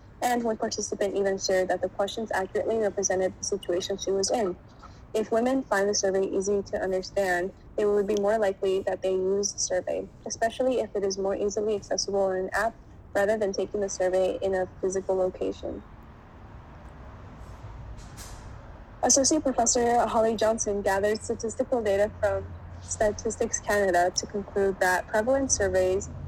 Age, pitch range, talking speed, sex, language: 10-29, 185-215 Hz, 155 wpm, female, English